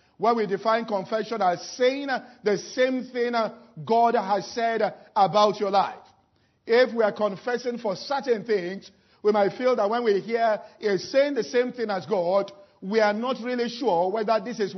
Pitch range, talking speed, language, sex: 195-235 Hz, 180 wpm, English, male